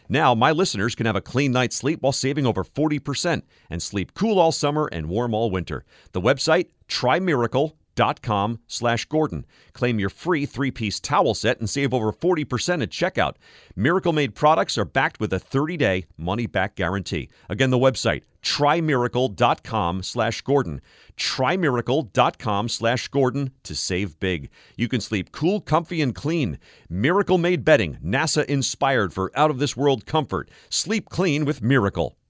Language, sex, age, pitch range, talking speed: English, male, 40-59, 100-140 Hz, 145 wpm